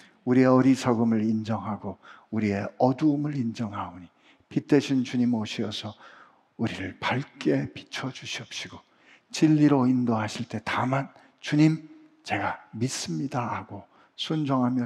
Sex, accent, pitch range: male, native, 105-145 Hz